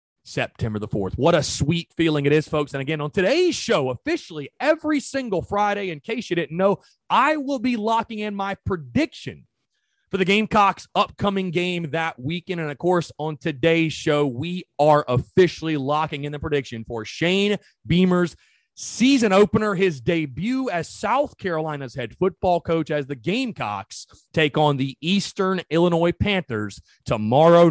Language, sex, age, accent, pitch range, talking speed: English, male, 30-49, American, 150-220 Hz, 160 wpm